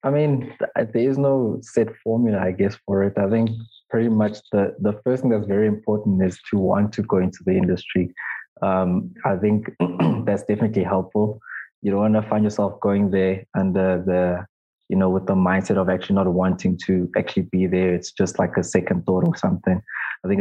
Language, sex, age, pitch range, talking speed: English, male, 20-39, 95-105 Hz, 200 wpm